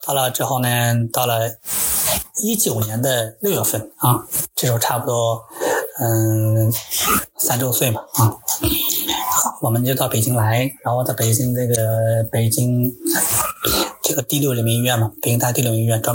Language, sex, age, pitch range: Chinese, male, 30-49, 115-135 Hz